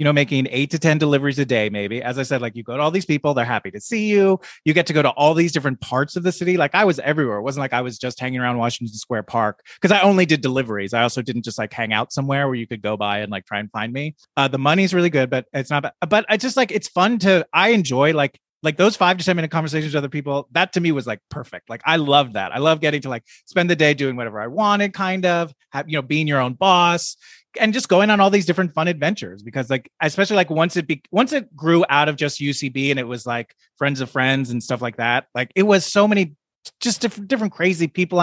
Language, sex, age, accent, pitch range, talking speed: English, male, 30-49, American, 130-180 Hz, 285 wpm